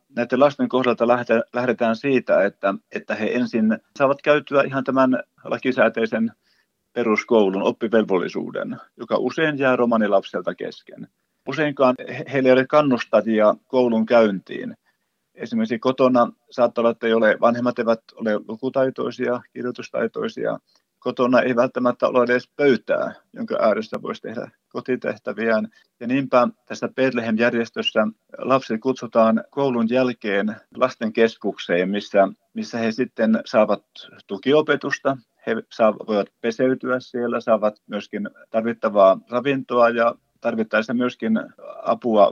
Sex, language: male, Finnish